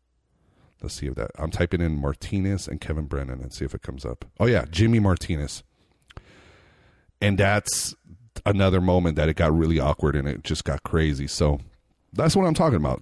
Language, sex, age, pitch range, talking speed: English, male, 30-49, 75-100 Hz, 190 wpm